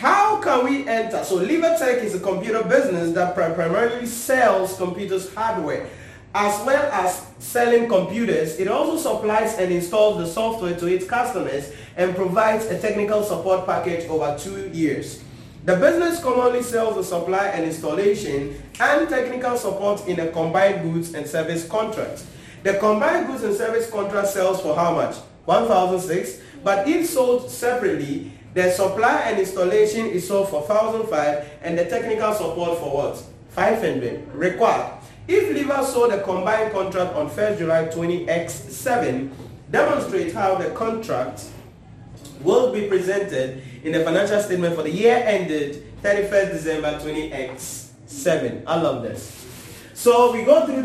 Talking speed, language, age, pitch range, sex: 150 wpm, English, 30-49, 165-230 Hz, male